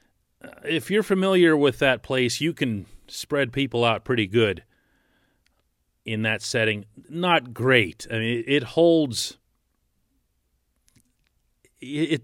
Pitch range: 110-130 Hz